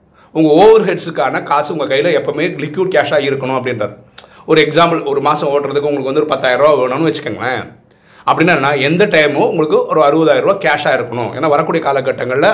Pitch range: 140-175 Hz